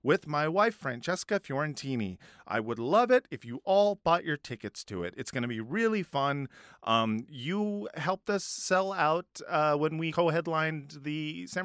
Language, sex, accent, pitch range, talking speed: English, male, American, 135-195 Hz, 180 wpm